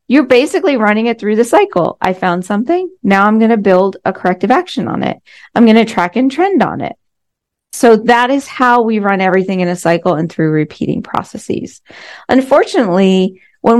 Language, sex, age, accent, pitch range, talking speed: English, female, 40-59, American, 190-250 Hz, 190 wpm